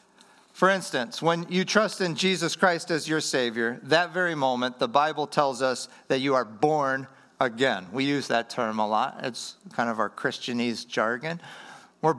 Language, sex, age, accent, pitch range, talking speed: English, male, 50-69, American, 130-205 Hz, 175 wpm